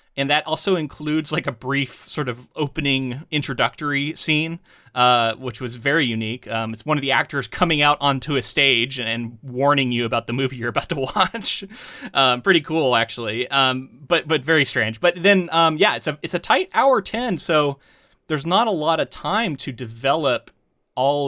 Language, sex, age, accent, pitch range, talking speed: English, male, 30-49, American, 120-155 Hz, 190 wpm